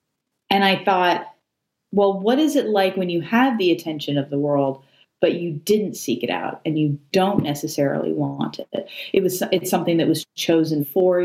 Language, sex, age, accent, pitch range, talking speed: English, female, 30-49, American, 155-195 Hz, 190 wpm